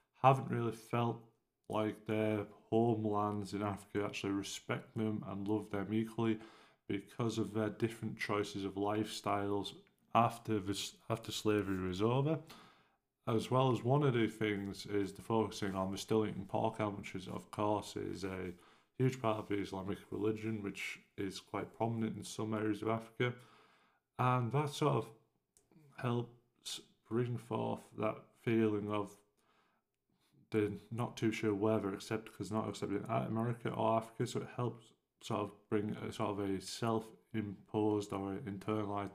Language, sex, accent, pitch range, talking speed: English, male, British, 100-115 Hz, 160 wpm